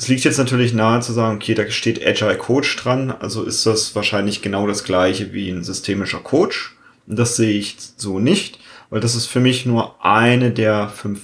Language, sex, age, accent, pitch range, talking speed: German, male, 30-49, German, 100-120 Hz, 210 wpm